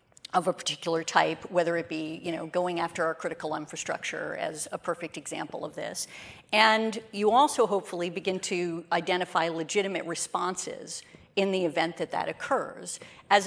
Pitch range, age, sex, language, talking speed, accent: 165-195 Hz, 40-59, female, English, 160 wpm, American